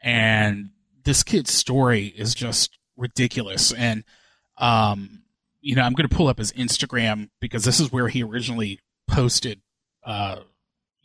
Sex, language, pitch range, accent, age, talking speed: male, English, 120-145 Hz, American, 30-49, 140 wpm